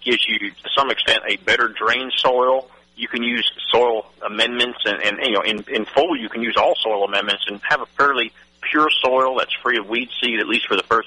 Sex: male